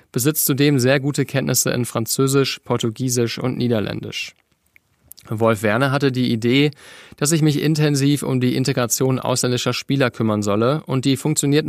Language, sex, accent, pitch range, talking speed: German, male, German, 115-140 Hz, 150 wpm